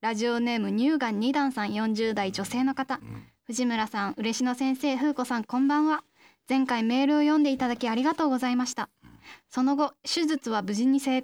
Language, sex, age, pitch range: Japanese, female, 10-29, 240-295 Hz